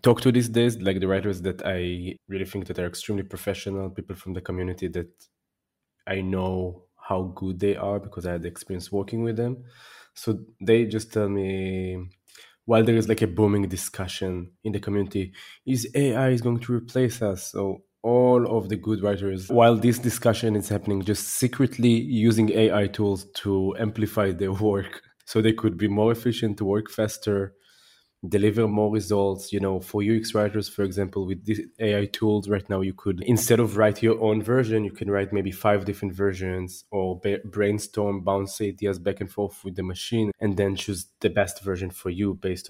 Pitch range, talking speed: 95-110 Hz, 190 wpm